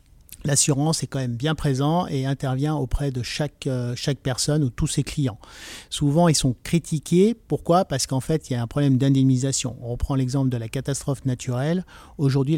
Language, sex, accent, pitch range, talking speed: French, male, French, 125-145 Hz, 185 wpm